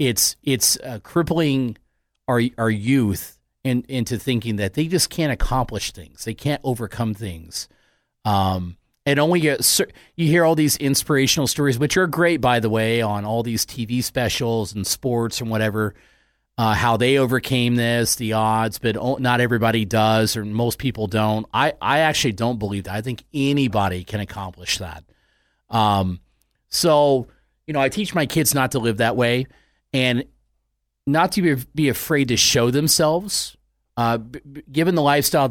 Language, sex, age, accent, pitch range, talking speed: English, male, 40-59, American, 105-135 Hz, 165 wpm